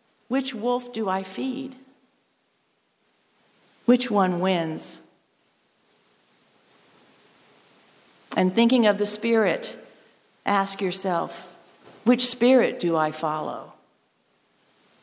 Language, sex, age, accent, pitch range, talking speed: English, female, 50-69, American, 165-210 Hz, 80 wpm